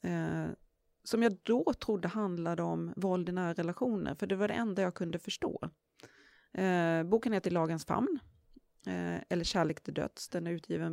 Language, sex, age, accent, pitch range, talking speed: English, female, 30-49, Swedish, 165-210 Hz, 160 wpm